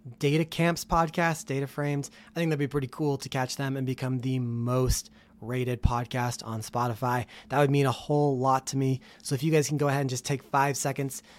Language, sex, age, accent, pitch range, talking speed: English, male, 30-49, American, 125-145 Hz, 220 wpm